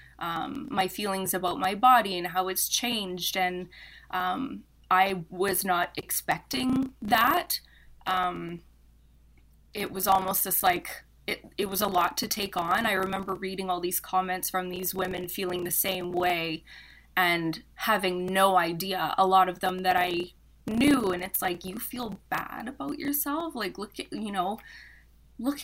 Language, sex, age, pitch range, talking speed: English, female, 20-39, 180-210 Hz, 160 wpm